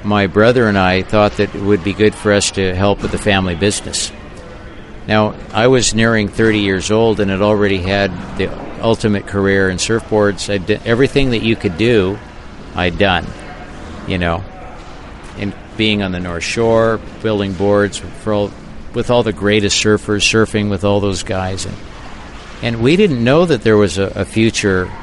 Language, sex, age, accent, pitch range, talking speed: English, male, 60-79, American, 95-110 Hz, 175 wpm